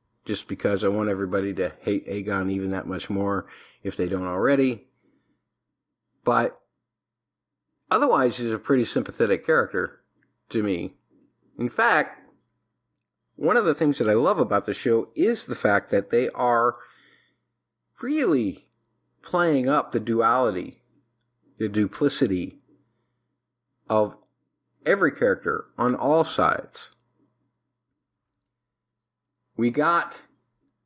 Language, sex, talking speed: English, male, 115 wpm